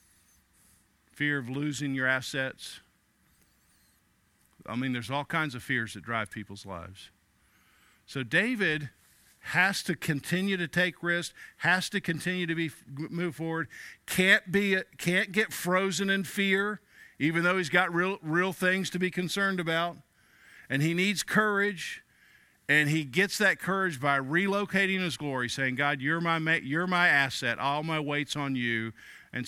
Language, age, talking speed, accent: English, 50-69, 155 wpm, American